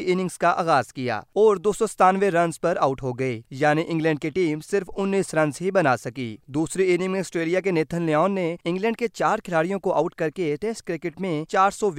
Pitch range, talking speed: 150-190 Hz, 210 wpm